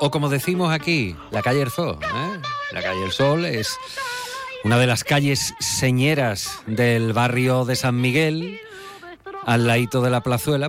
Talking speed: 165 wpm